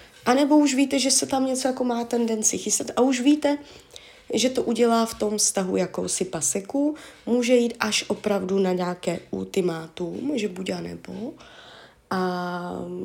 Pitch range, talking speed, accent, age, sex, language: 195-240 Hz, 155 wpm, native, 20-39, female, Czech